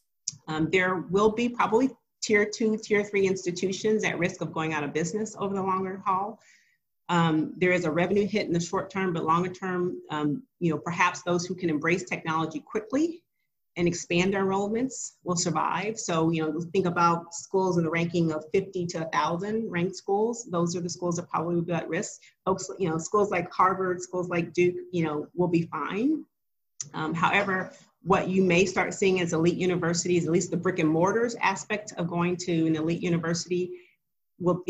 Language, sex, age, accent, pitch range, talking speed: English, female, 30-49, American, 160-190 Hz, 195 wpm